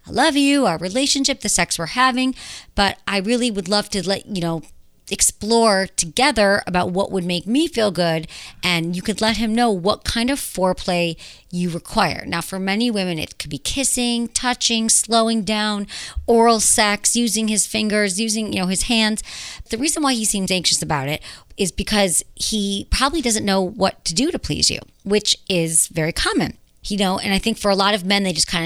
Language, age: English, 40-59